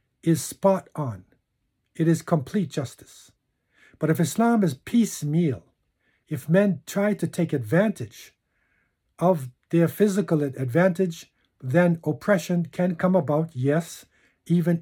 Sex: male